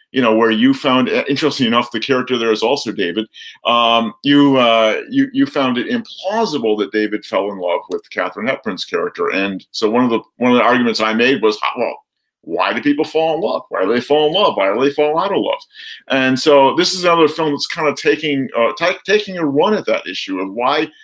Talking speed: 235 wpm